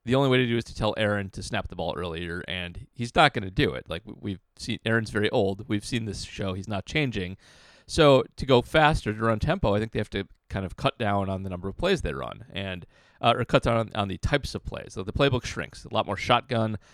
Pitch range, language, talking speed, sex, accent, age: 95-120 Hz, English, 275 wpm, male, American, 30-49